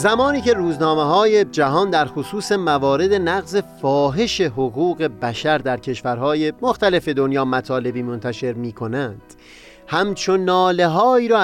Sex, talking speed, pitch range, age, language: male, 120 wpm, 125-175 Hz, 30-49, Persian